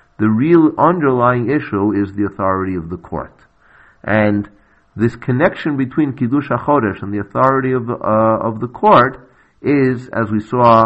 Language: English